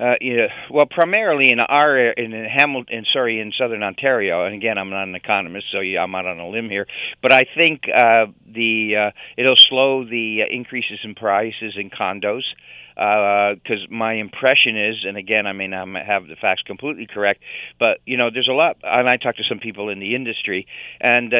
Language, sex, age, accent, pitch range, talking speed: English, male, 50-69, American, 105-125 Hz, 200 wpm